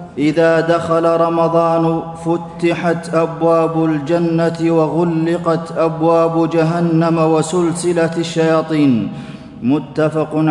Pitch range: 155-165 Hz